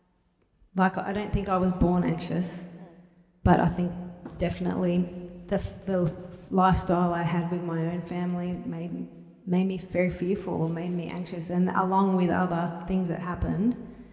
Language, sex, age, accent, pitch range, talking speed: English, female, 30-49, Australian, 165-185 Hz, 155 wpm